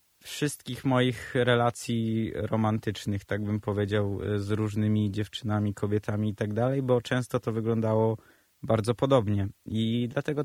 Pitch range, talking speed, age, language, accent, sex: 105-130 Hz, 125 wpm, 20-39, Polish, native, male